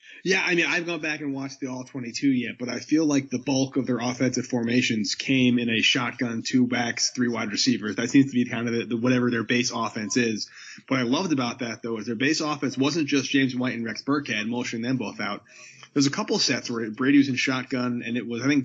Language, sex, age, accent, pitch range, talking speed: English, male, 20-39, American, 120-140 Hz, 250 wpm